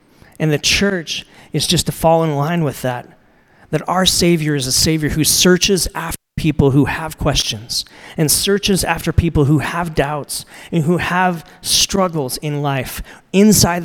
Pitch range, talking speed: 135-175 Hz, 165 wpm